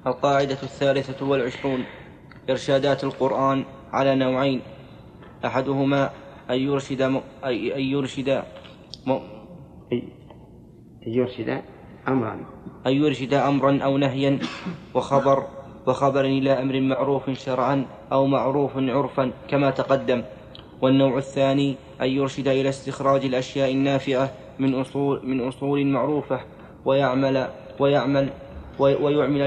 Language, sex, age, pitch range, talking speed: Arabic, male, 20-39, 135-140 Hz, 100 wpm